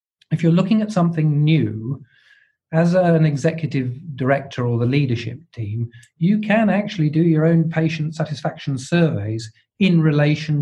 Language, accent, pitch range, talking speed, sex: English, British, 115-155 Hz, 140 wpm, male